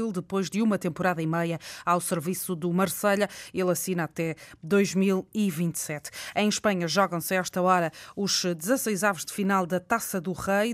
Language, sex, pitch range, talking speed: Portuguese, female, 180-205 Hz, 155 wpm